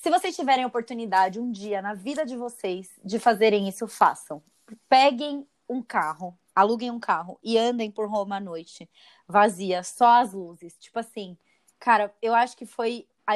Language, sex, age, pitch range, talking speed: Portuguese, female, 20-39, 210-255 Hz, 175 wpm